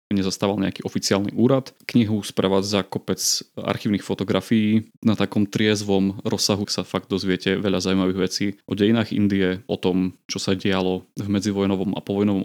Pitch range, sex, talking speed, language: 95-110 Hz, male, 150 wpm, Slovak